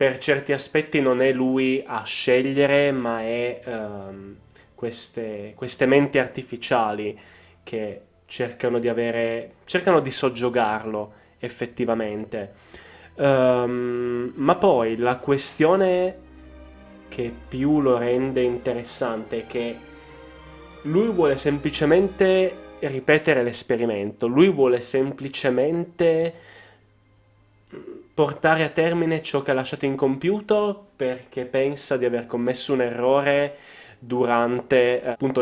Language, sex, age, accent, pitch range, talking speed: Italian, male, 10-29, native, 120-150 Hz, 100 wpm